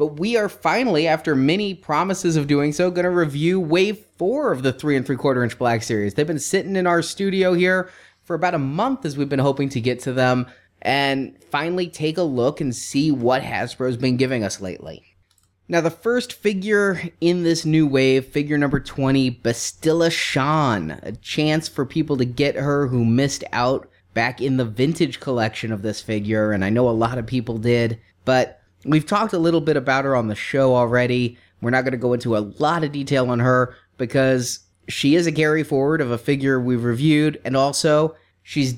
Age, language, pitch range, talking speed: 20-39, English, 125-160 Hz, 205 wpm